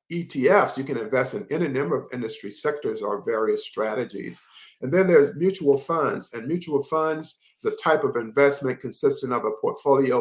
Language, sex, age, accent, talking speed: English, male, 50-69, American, 175 wpm